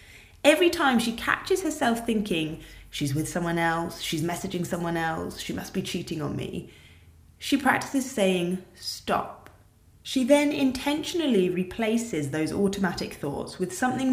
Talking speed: 140 wpm